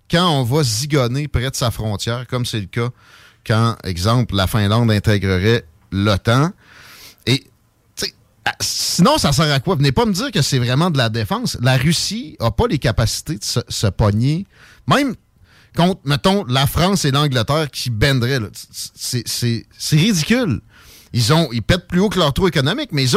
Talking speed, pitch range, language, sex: 180 wpm, 115-160 Hz, French, male